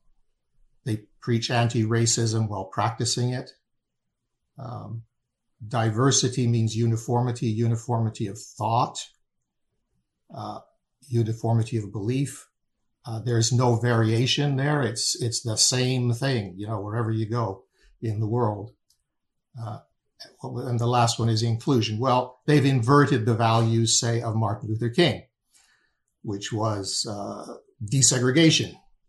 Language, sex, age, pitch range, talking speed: English, male, 60-79, 115-130 Hz, 115 wpm